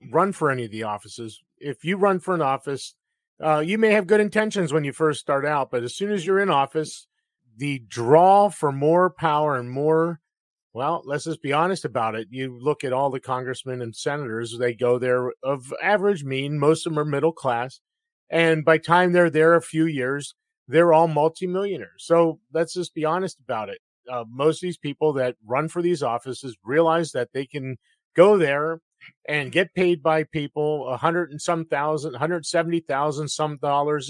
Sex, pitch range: male, 135-170 Hz